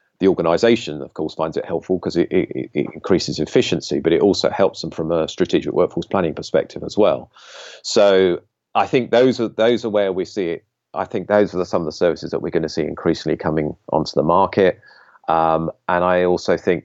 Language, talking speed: English, 215 wpm